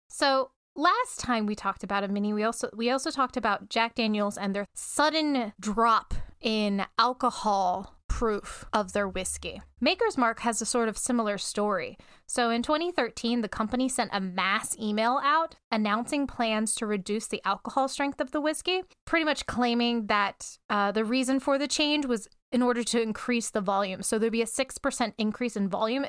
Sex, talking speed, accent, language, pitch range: female, 180 wpm, American, English, 205-260 Hz